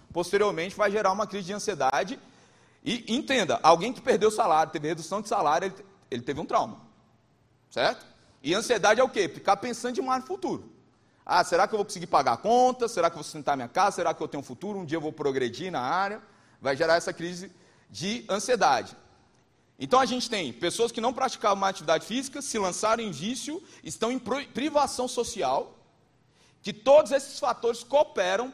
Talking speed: 195 wpm